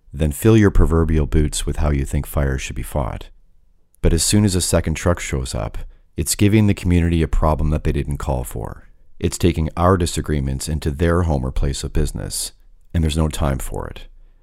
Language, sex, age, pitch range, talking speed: English, male, 40-59, 75-85 Hz, 210 wpm